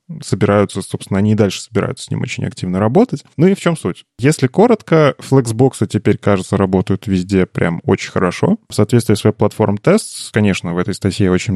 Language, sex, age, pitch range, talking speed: Russian, male, 20-39, 100-125 Hz, 180 wpm